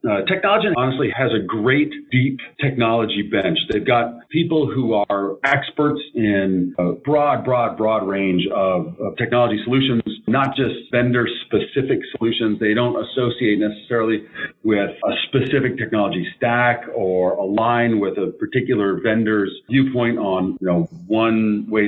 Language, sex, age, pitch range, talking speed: English, male, 40-59, 100-120 Hz, 135 wpm